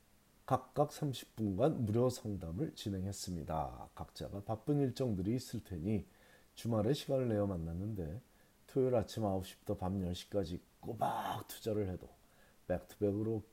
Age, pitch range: 40-59, 95-125 Hz